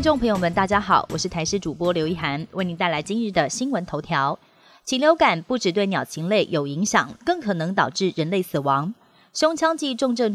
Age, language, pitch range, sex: 30-49, Chinese, 170-230 Hz, female